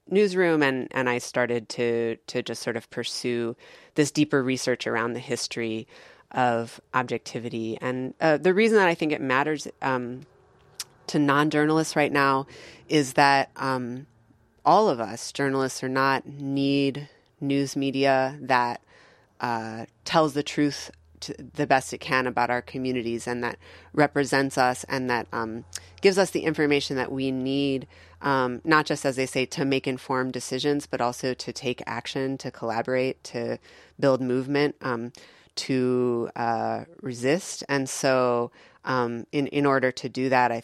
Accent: American